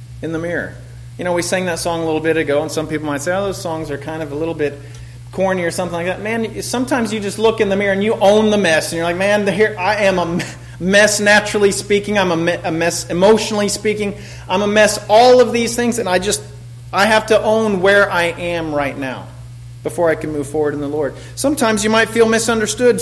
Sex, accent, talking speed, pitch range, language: male, American, 240 wpm, 145-220 Hz, English